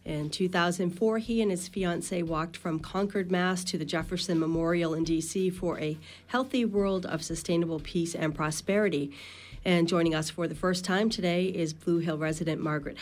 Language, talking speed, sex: English, 175 wpm, female